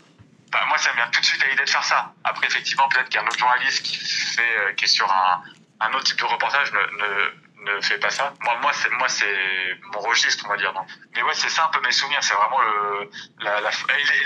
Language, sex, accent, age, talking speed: French, male, French, 20-39, 260 wpm